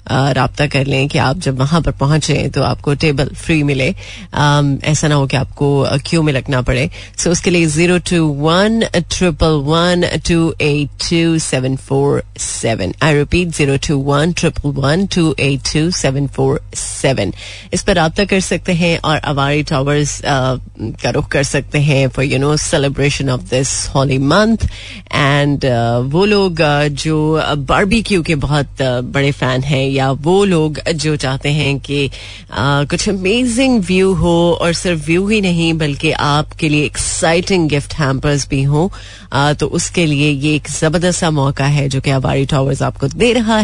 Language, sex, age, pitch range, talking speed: Hindi, female, 30-49, 135-165 Hz, 180 wpm